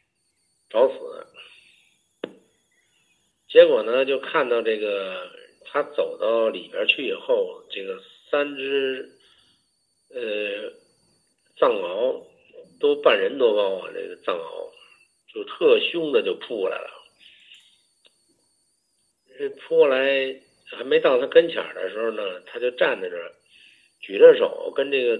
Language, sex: Chinese, male